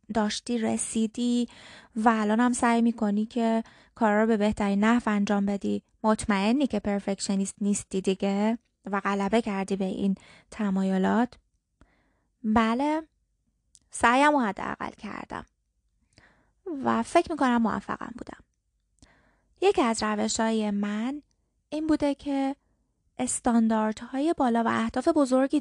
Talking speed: 110 wpm